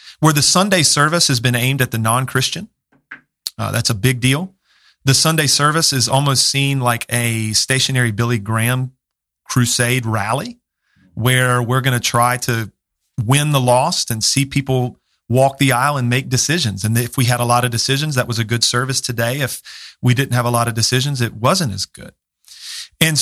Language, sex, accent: English, male, American